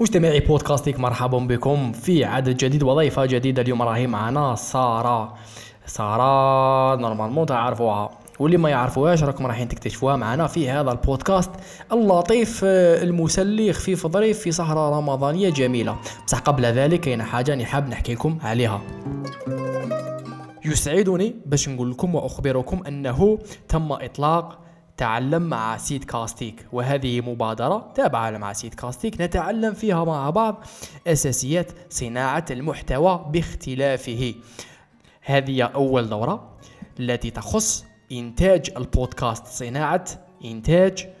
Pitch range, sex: 120-160 Hz, male